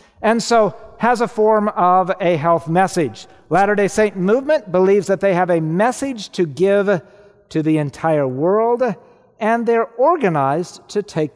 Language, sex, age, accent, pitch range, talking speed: English, male, 50-69, American, 155-215 Hz, 155 wpm